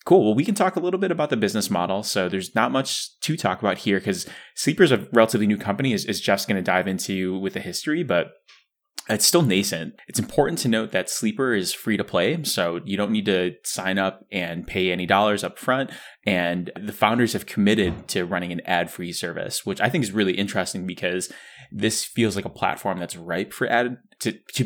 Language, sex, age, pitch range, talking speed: English, male, 20-39, 90-110 Hz, 225 wpm